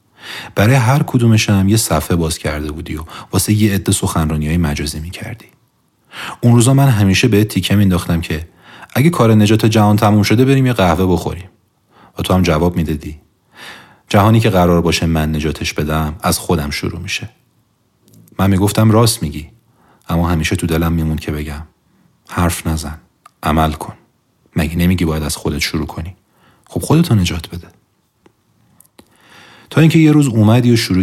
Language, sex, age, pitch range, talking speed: Persian, male, 40-59, 80-105 Hz, 165 wpm